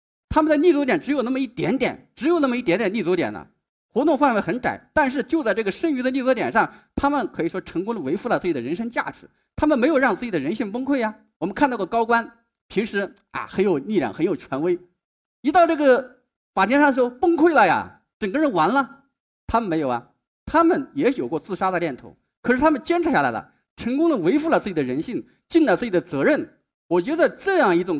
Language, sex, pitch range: Chinese, male, 200-300 Hz